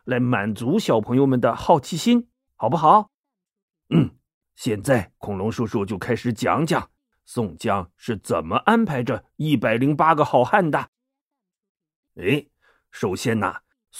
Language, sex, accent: Chinese, male, native